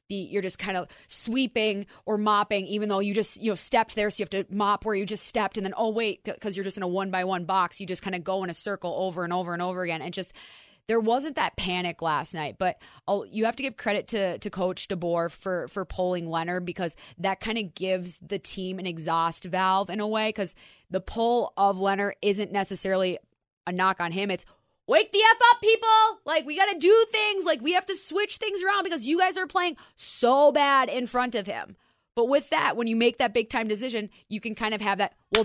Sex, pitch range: female, 190-235 Hz